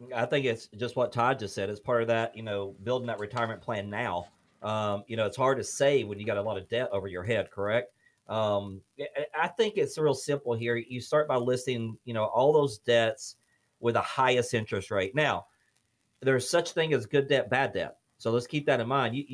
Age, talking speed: 40-59, 230 wpm